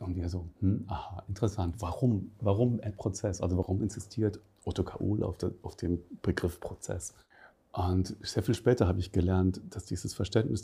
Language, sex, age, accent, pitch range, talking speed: German, male, 40-59, German, 90-105 Hz, 165 wpm